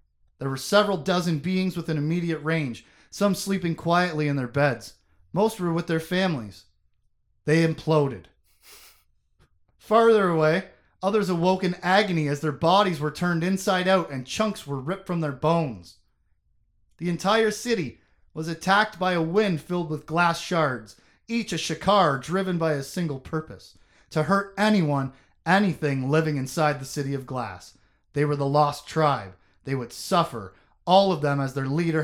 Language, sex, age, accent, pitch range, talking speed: English, male, 30-49, American, 125-175 Hz, 160 wpm